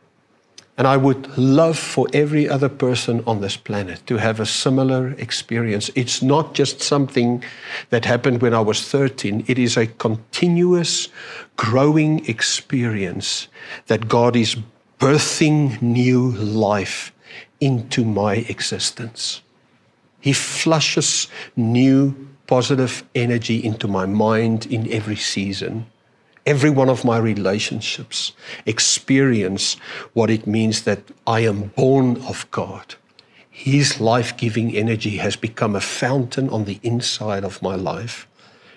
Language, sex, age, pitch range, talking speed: English, male, 60-79, 110-135 Hz, 125 wpm